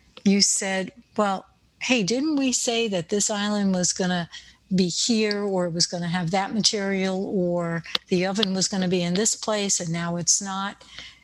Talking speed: 180 wpm